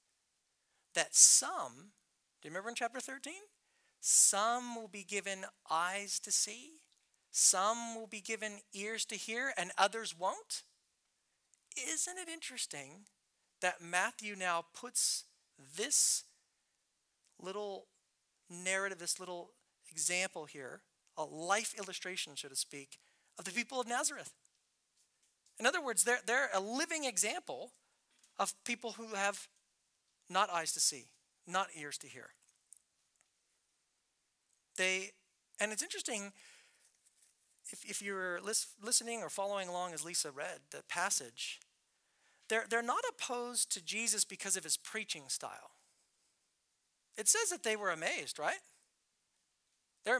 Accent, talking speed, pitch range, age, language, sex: American, 125 wpm, 185-240 Hz, 40-59, English, male